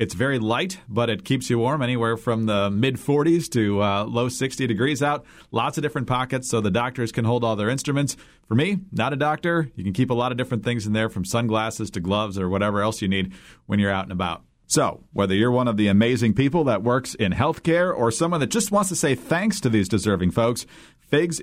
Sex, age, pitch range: male, 40-59, 105-140 Hz